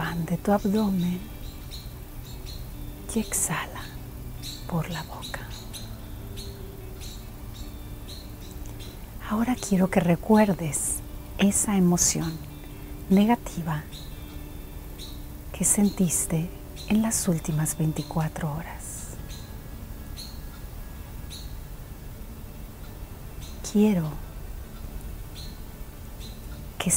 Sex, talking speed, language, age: female, 55 wpm, Spanish, 40-59